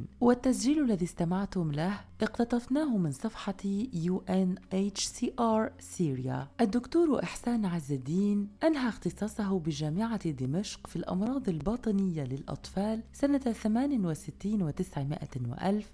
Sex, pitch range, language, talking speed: female, 165-225 Hz, Arabic, 100 wpm